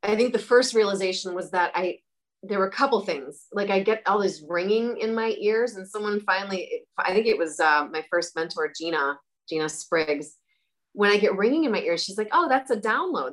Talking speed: 220 wpm